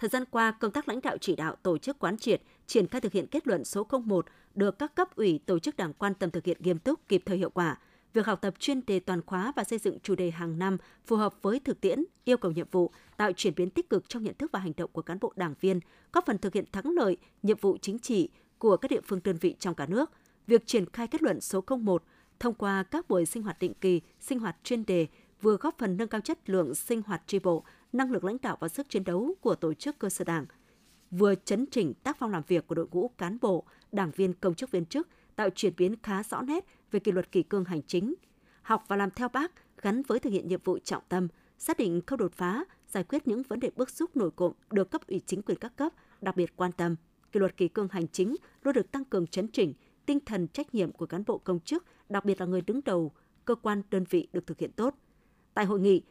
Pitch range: 180-240 Hz